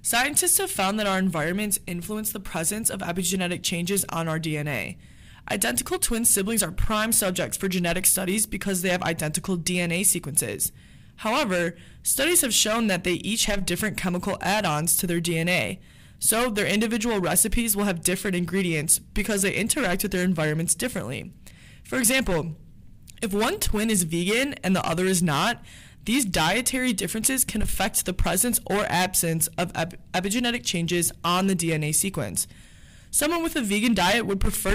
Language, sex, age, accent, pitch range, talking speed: English, female, 20-39, American, 175-215 Hz, 160 wpm